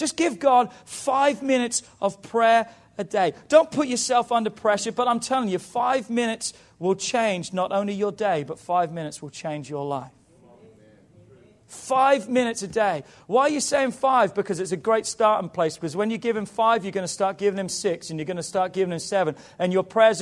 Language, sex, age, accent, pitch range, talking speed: English, male, 40-59, British, 170-235 Hz, 215 wpm